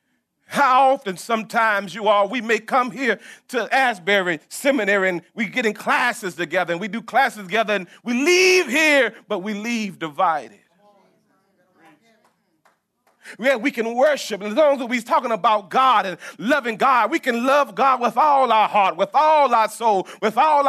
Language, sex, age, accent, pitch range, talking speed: English, male, 40-59, American, 215-305 Hz, 175 wpm